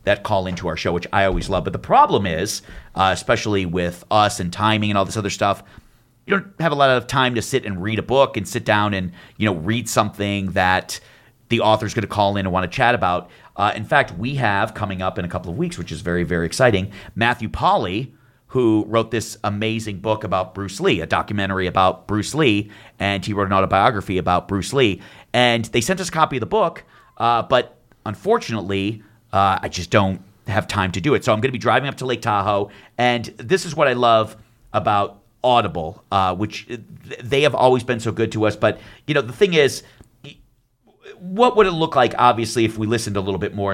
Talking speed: 230 wpm